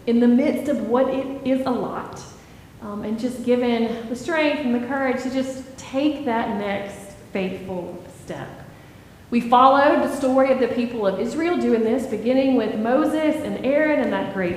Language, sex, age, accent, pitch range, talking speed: English, female, 30-49, American, 225-285 Hz, 180 wpm